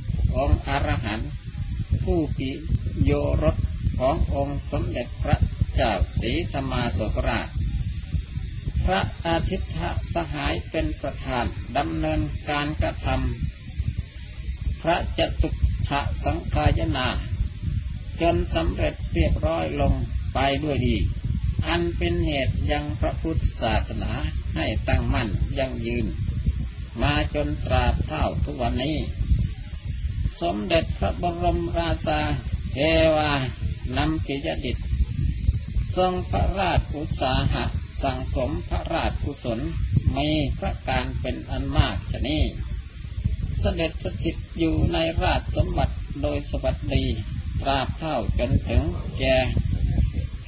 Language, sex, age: Thai, male, 30-49